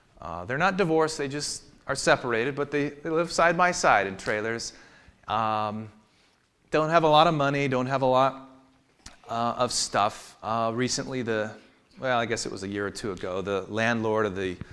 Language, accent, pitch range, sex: English, American, 105-150 Hz, male